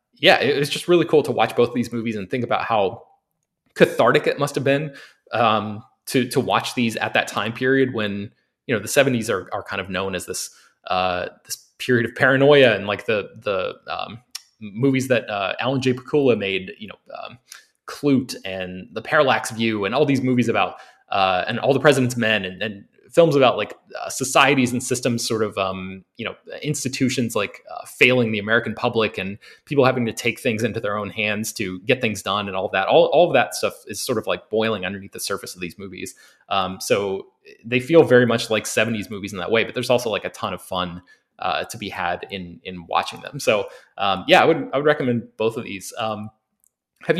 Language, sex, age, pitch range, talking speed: English, male, 20-39, 105-135 Hz, 220 wpm